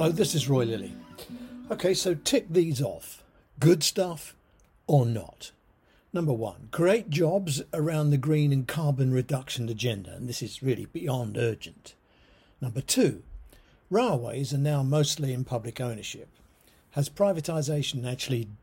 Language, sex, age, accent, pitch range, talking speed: English, male, 60-79, British, 120-160 Hz, 140 wpm